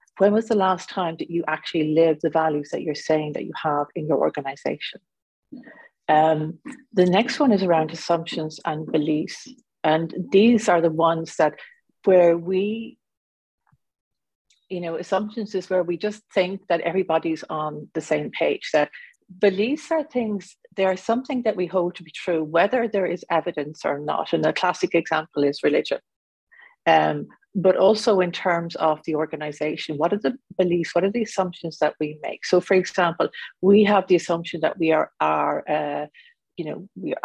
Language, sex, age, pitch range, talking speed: English, female, 40-59, 160-205 Hz, 175 wpm